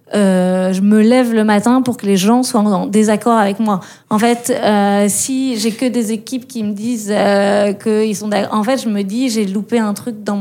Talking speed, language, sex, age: 230 wpm, French, female, 30-49